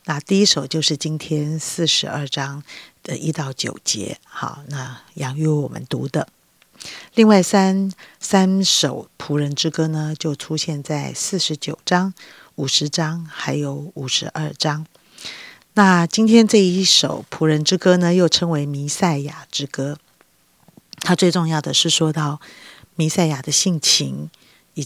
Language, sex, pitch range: Chinese, female, 150-180 Hz